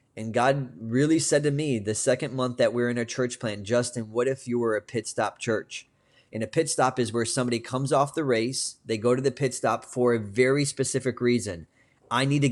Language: English